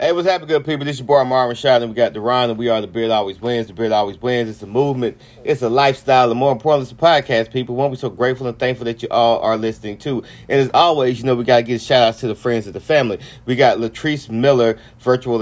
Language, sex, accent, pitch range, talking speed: English, male, American, 110-130 Hz, 285 wpm